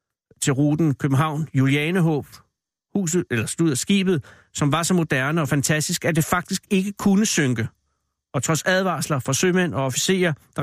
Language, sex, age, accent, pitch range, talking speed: Danish, male, 60-79, native, 135-175 Hz, 145 wpm